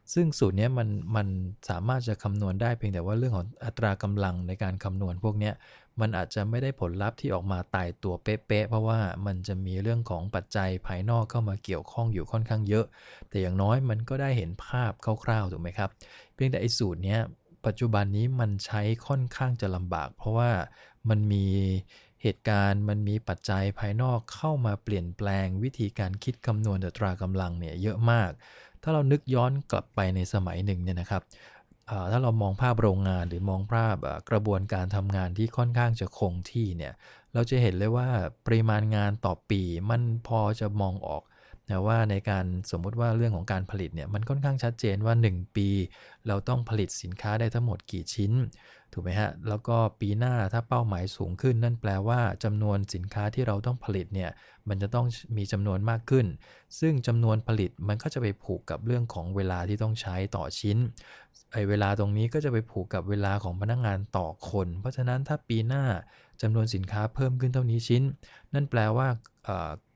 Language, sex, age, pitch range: English, male, 20-39, 95-115 Hz